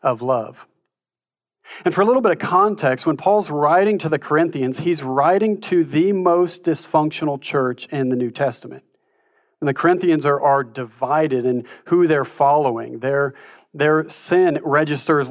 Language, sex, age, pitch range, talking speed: English, male, 40-59, 130-165 Hz, 155 wpm